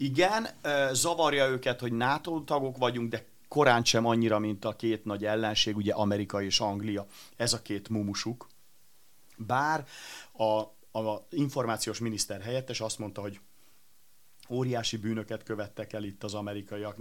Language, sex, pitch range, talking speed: Hungarian, male, 110-125 Hz, 140 wpm